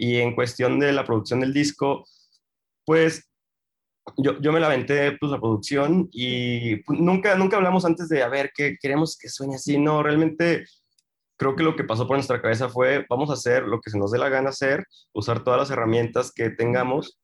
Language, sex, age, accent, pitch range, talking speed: Spanish, male, 20-39, Mexican, 110-140 Hz, 200 wpm